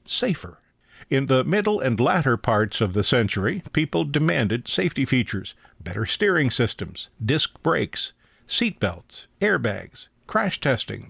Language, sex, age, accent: English, male, 60-79, American